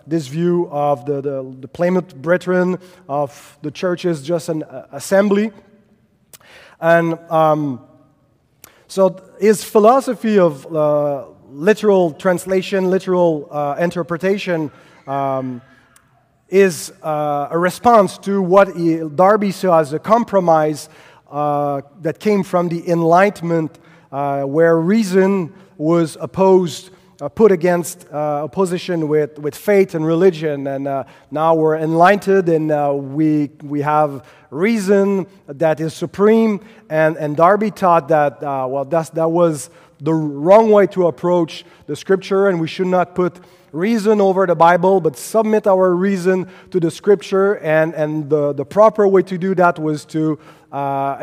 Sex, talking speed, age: male, 140 wpm, 30-49